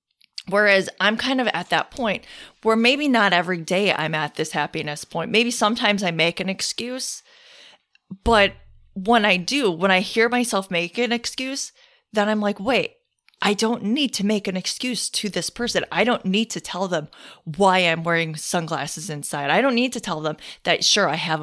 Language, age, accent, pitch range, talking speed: English, 20-39, American, 170-240 Hz, 195 wpm